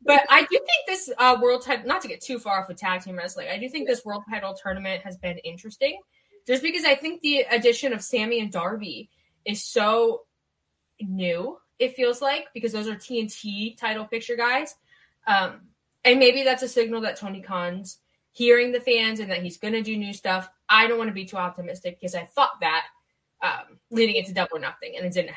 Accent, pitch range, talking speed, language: American, 190-250 Hz, 215 wpm, English